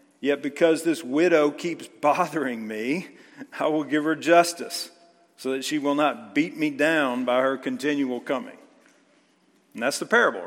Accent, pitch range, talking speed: American, 145-190 Hz, 160 wpm